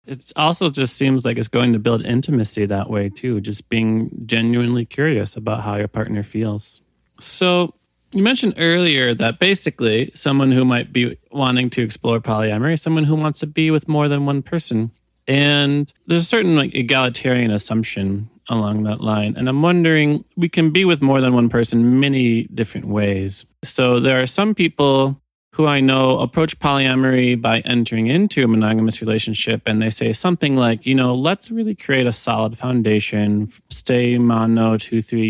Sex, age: male, 30-49